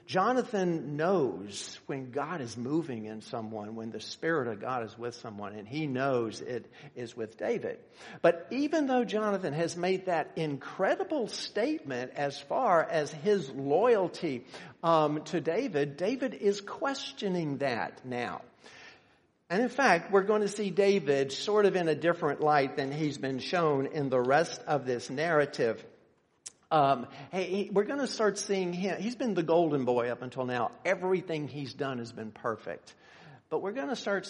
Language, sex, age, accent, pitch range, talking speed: English, male, 50-69, American, 135-195 Hz, 170 wpm